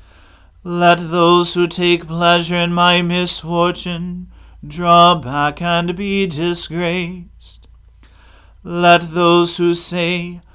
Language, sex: English, male